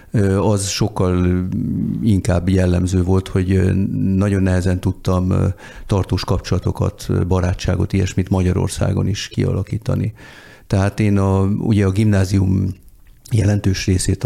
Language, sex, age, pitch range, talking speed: Hungarian, male, 50-69, 95-110 Hz, 95 wpm